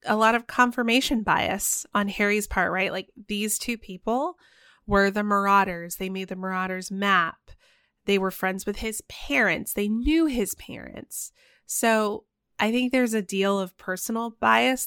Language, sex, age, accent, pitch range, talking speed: English, female, 20-39, American, 190-230 Hz, 160 wpm